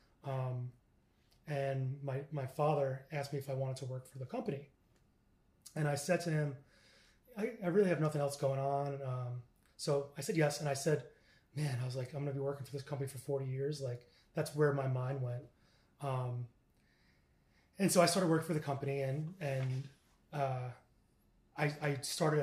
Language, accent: English, American